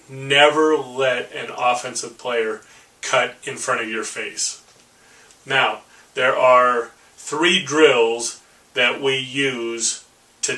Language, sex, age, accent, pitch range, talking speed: English, male, 30-49, American, 125-150 Hz, 115 wpm